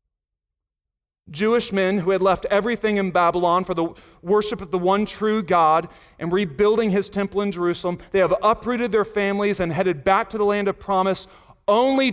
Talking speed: 180 wpm